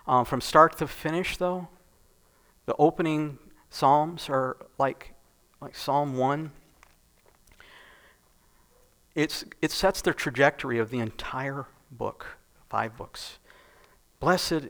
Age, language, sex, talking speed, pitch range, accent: 50-69, English, male, 105 wpm, 130-165 Hz, American